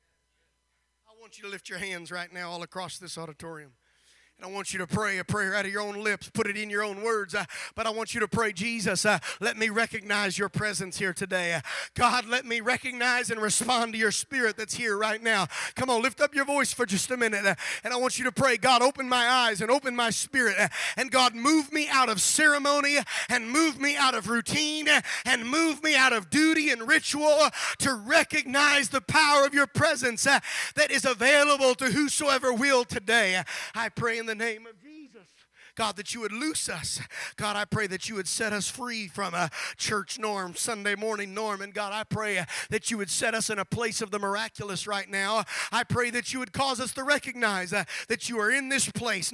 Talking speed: 215 wpm